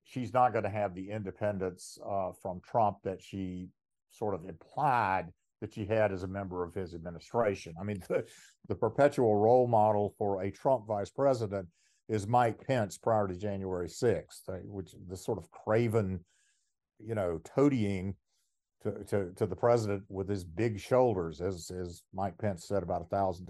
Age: 50-69